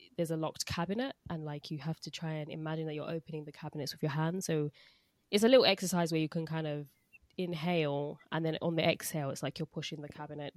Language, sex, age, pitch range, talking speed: English, female, 20-39, 150-170 Hz, 240 wpm